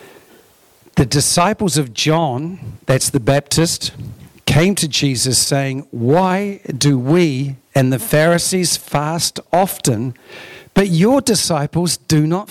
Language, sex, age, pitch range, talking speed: English, male, 50-69, 155-200 Hz, 115 wpm